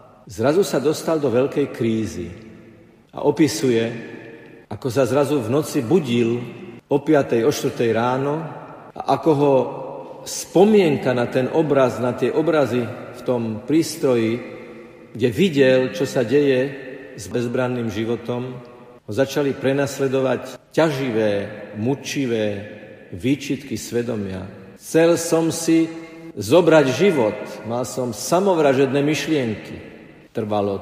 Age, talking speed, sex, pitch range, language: 50-69, 110 wpm, male, 115-145 Hz, Slovak